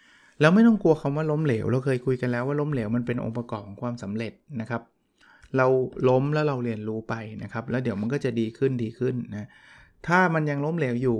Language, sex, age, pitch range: Thai, male, 20-39, 115-145 Hz